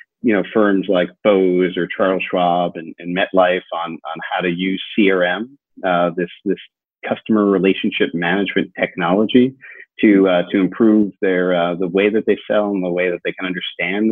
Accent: American